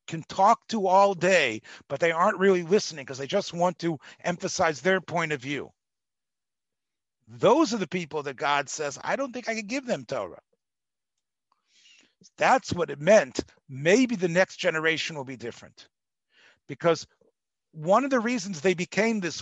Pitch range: 155-210 Hz